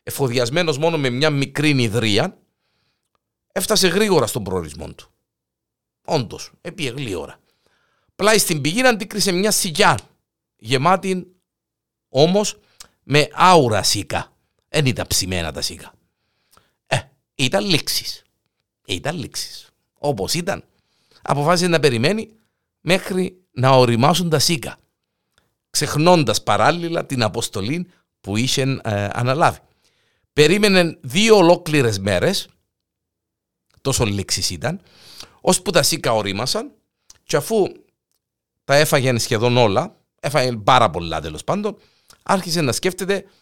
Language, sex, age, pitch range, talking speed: Greek, male, 50-69, 105-180 Hz, 110 wpm